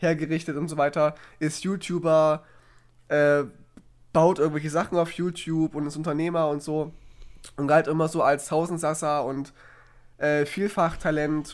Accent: German